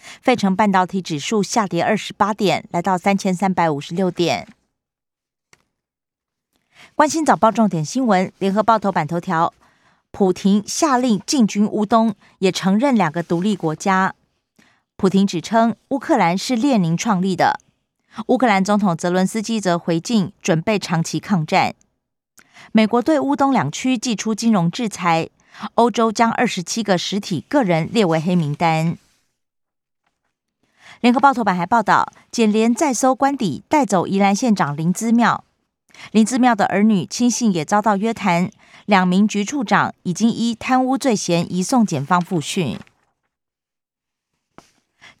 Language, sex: Chinese, female